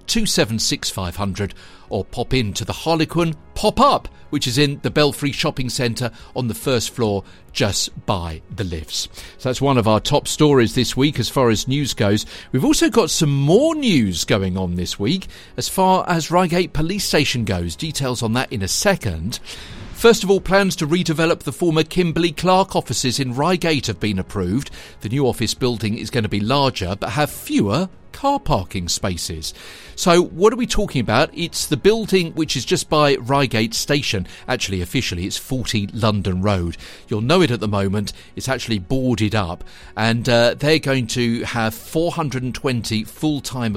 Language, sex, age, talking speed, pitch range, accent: English, male, 50-69, 180 wpm, 100-155 Hz, British